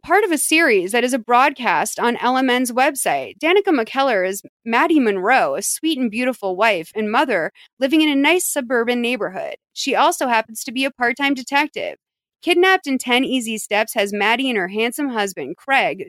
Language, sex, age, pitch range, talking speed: English, female, 30-49, 205-285 Hz, 185 wpm